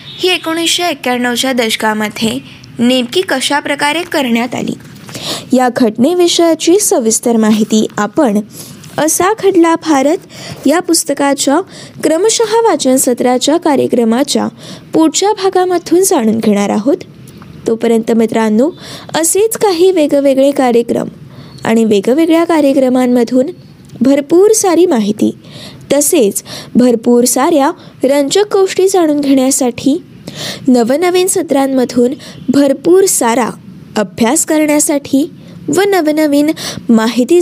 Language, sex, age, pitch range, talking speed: Marathi, female, 20-39, 240-335 Hz, 90 wpm